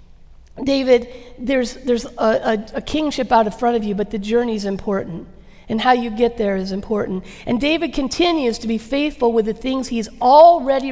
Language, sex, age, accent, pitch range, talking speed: English, female, 50-69, American, 230-285 Hz, 185 wpm